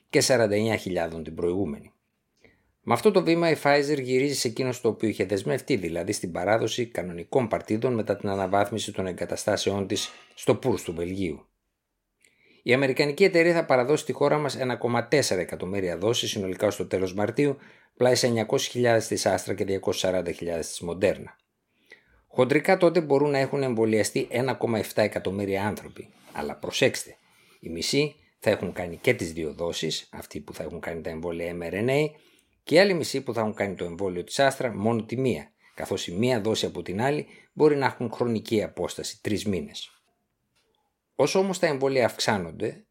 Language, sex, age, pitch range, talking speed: Greek, male, 60-79, 105-140 Hz, 165 wpm